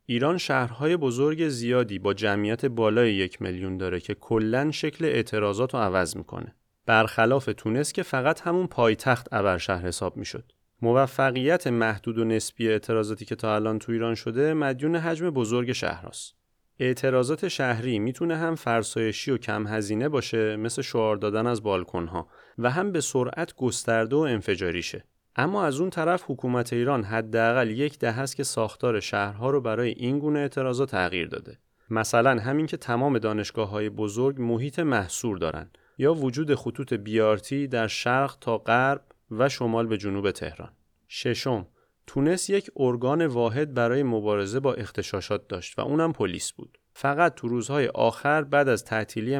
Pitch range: 110-140 Hz